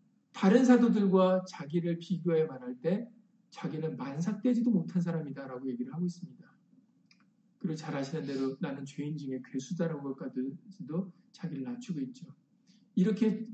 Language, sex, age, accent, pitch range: Korean, male, 50-69, native, 170-220 Hz